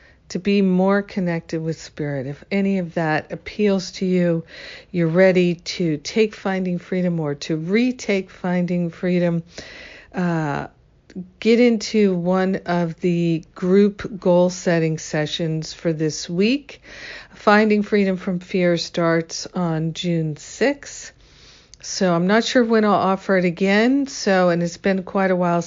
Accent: American